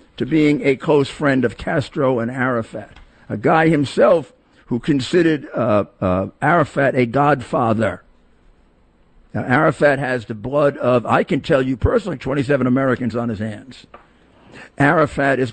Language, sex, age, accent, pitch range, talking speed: English, male, 50-69, American, 115-150 Hz, 145 wpm